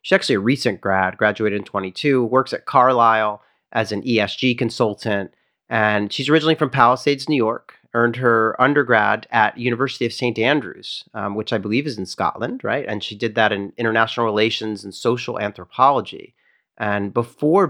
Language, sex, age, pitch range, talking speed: English, male, 40-59, 110-145 Hz, 170 wpm